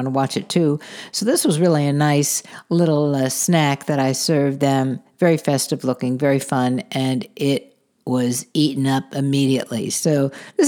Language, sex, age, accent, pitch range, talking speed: English, female, 60-79, American, 135-190 Hz, 170 wpm